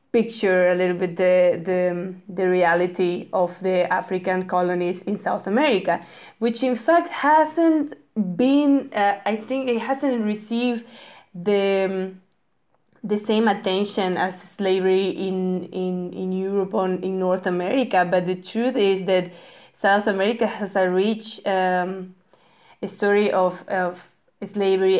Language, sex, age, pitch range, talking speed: English, female, 20-39, 185-230 Hz, 135 wpm